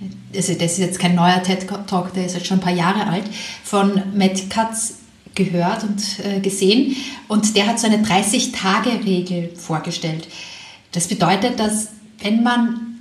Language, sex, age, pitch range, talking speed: German, female, 30-49, 190-225 Hz, 150 wpm